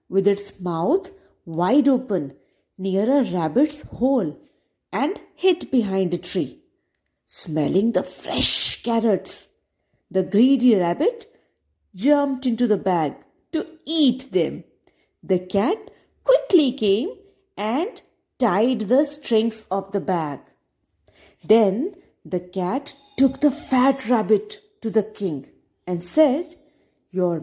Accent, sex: Indian, female